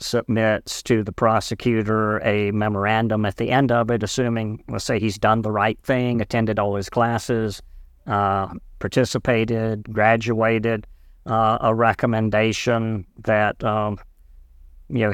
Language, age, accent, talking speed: English, 50-69, American, 125 wpm